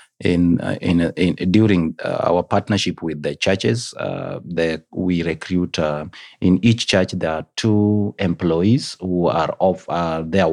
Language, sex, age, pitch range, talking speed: English, male, 30-49, 85-105 Hz, 165 wpm